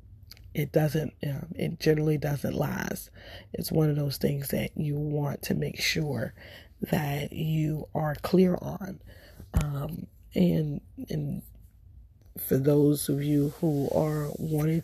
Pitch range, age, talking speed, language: 145-160 Hz, 40-59, 140 wpm, English